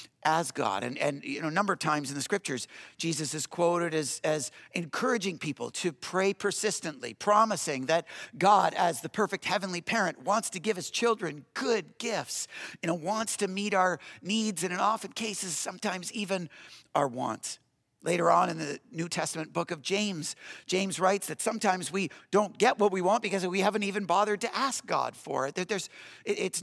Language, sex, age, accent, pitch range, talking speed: English, male, 50-69, American, 155-210 Hz, 190 wpm